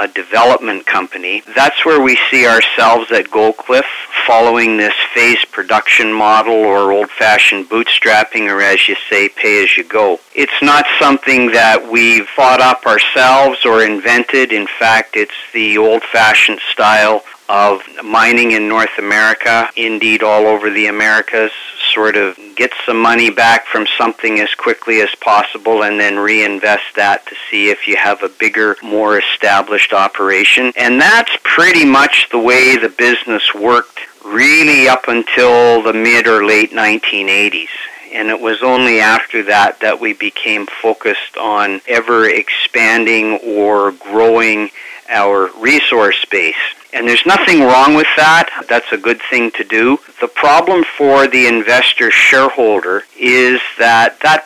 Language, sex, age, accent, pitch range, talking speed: English, male, 50-69, American, 110-125 Hz, 150 wpm